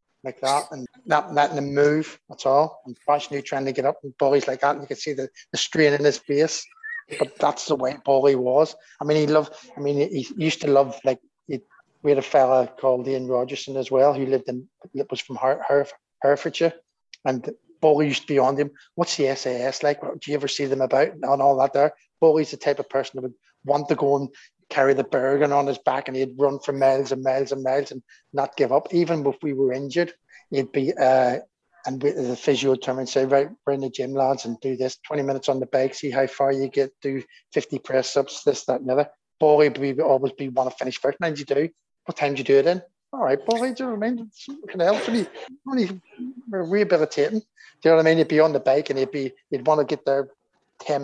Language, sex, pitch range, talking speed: English, male, 135-150 Hz, 250 wpm